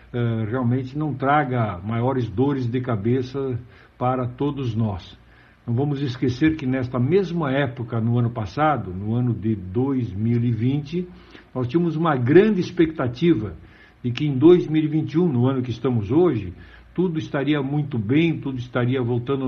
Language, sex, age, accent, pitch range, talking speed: Portuguese, male, 60-79, Brazilian, 120-155 Hz, 140 wpm